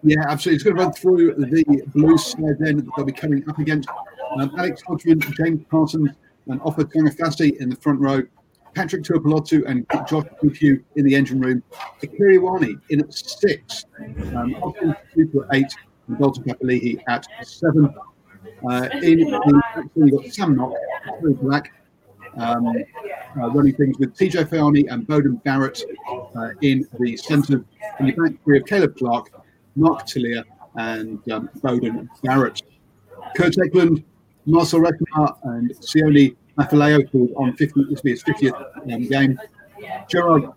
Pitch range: 135-165 Hz